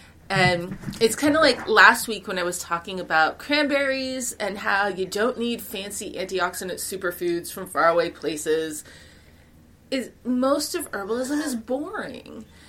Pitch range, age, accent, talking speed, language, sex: 200-265 Hz, 30-49, American, 140 wpm, English, female